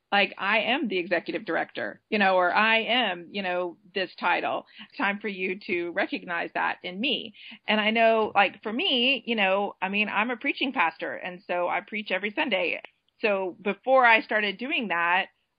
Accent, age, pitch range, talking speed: American, 40-59, 190-255 Hz, 190 wpm